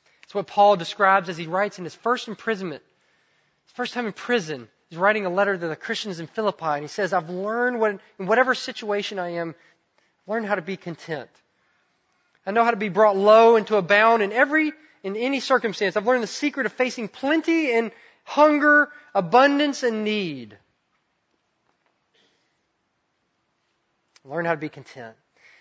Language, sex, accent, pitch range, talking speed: English, male, American, 175-225 Hz, 175 wpm